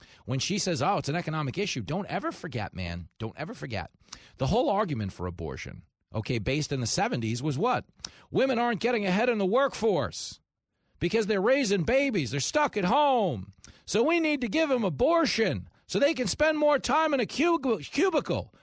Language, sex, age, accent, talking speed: English, male, 40-59, American, 185 wpm